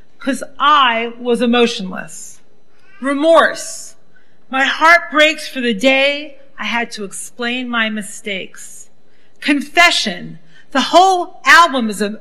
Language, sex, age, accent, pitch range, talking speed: English, female, 40-59, American, 220-285 Hz, 115 wpm